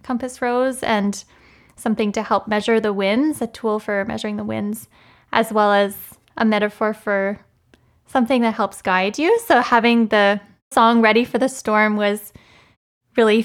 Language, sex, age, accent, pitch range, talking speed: English, female, 10-29, American, 210-245 Hz, 160 wpm